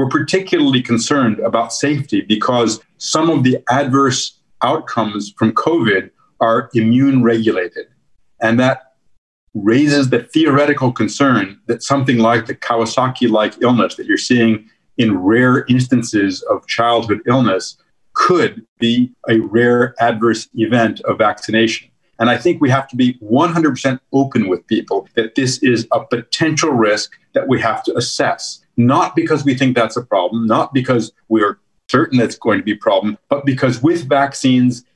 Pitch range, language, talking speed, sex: 115-145 Hz, English, 150 wpm, male